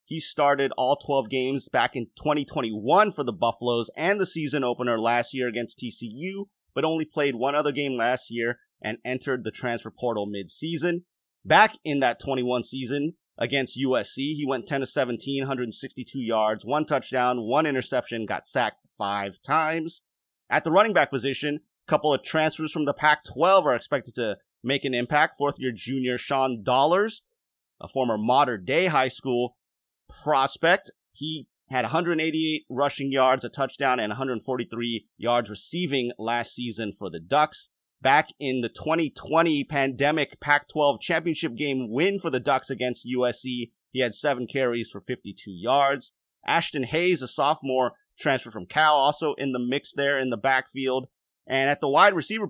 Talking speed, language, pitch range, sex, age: 165 wpm, English, 120-150 Hz, male, 30-49